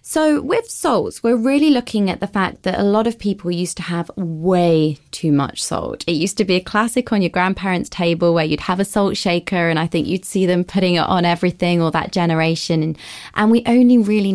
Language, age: English, 20-39